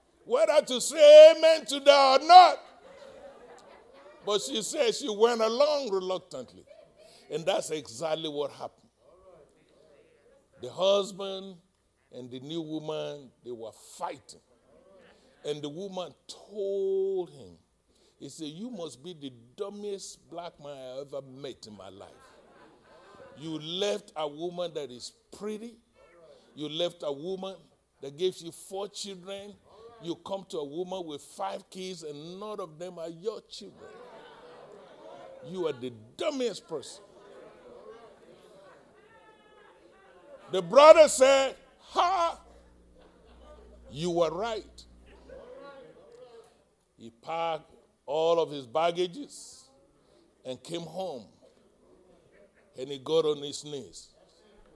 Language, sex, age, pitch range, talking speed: English, male, 60-79, 150-235 Hz, 115 wpm